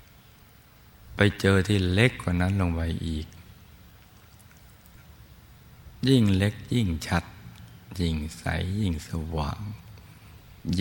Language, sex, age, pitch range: Thai, male, 60-79, 80-95 Hz